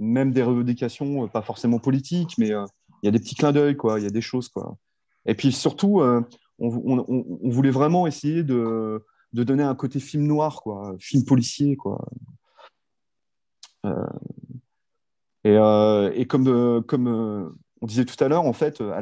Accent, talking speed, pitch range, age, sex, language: French, 190 wpm, 110-135 Hz, 30-49, male, French